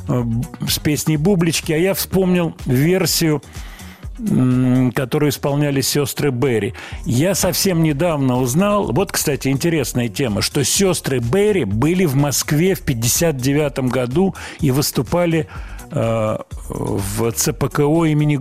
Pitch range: 125-160 Hz